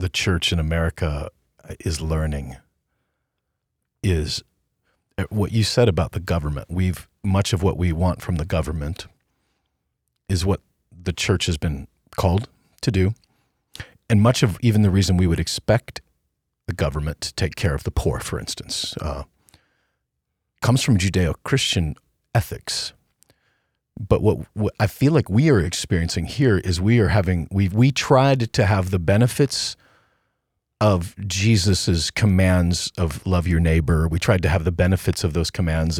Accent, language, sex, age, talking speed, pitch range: American, English, male, 40-59, 155 wpm, 85-105 Hz